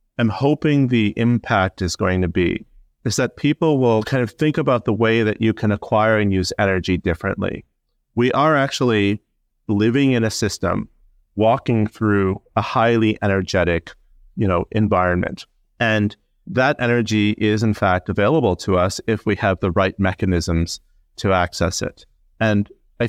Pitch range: 90-110 Hz